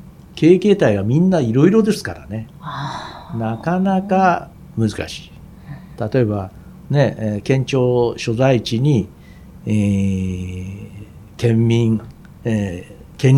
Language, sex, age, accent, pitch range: Japanese, male, 60-79, native, 105-160 Hz